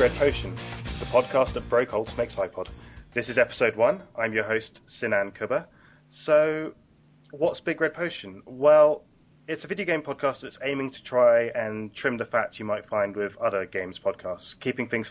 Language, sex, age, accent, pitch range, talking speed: English, male, 30-49, British, 100-135 Hz, 185 wpm